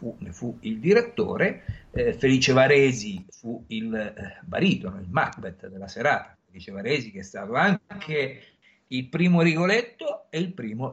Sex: male